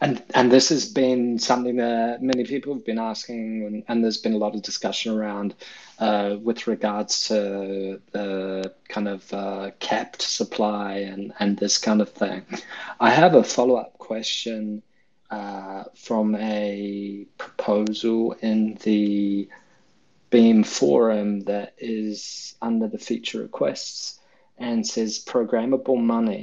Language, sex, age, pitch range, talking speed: English, male, 20-39, 105-115 Hz, 135 wpm